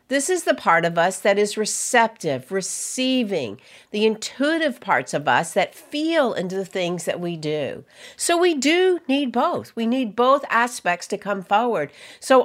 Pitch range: 190-265 Hz